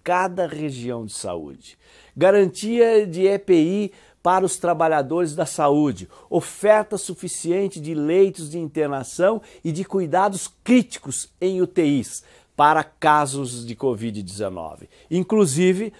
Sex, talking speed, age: male, 110 wpm, 60-79